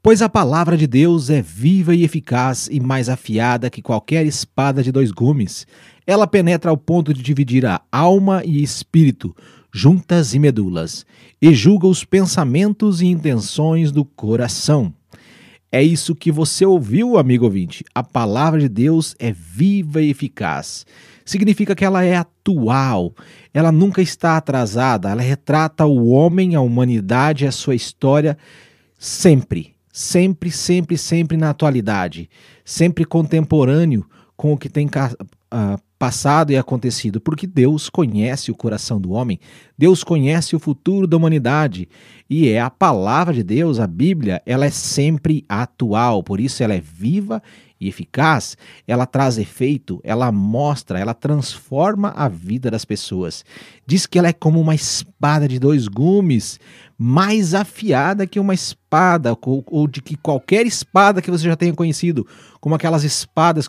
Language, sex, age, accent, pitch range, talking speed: Portuguese, male, 40-59, Brazilian, 120-165 Hz, 150 wpm